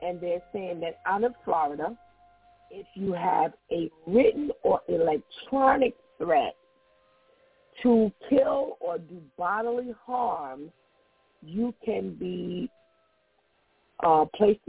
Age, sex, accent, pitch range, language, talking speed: 50-69, female, American, 155-240 Hz, English, 105 wpm